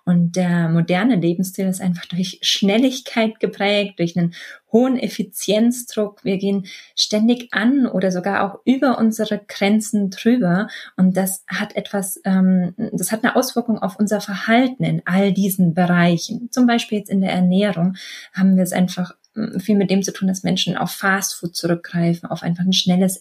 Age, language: 20-39, German